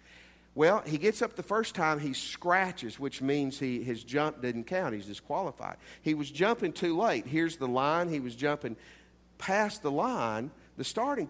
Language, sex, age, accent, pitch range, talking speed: English, male, 50-69, American, 120-175 Hz, 180 wpm